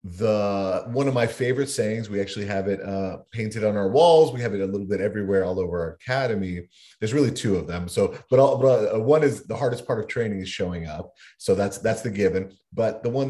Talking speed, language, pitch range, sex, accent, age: 240 wpm, English, 95-130 Hz, male, American, 30-49